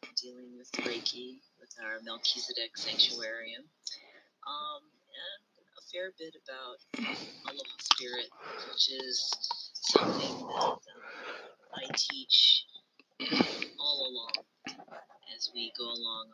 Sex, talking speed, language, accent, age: female, 105 wpm, English, American, 40-59